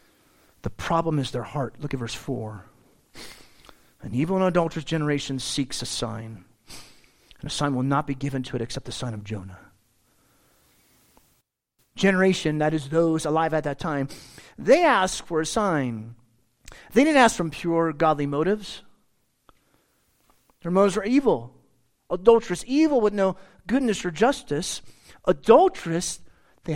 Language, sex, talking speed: English, male, 145 wpm